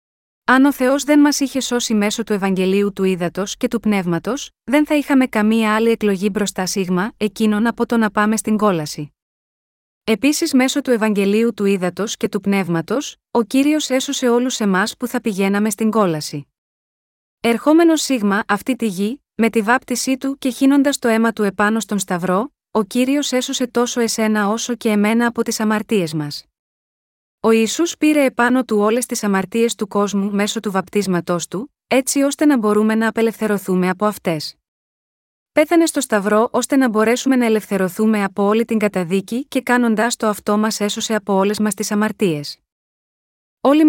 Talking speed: 170 wpm